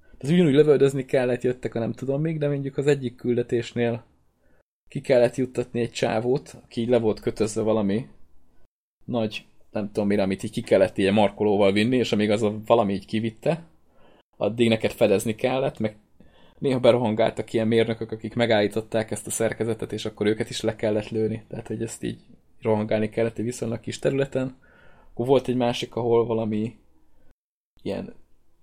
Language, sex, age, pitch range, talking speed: Hungarian, male, 20-39, 110-125 Hz, 170 wpm